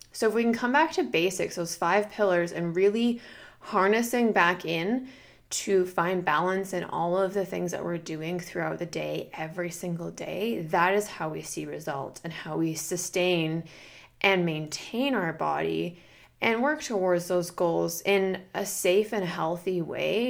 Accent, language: American, English